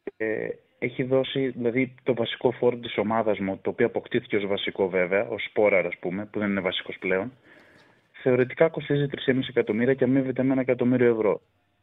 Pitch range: 105-125 Hz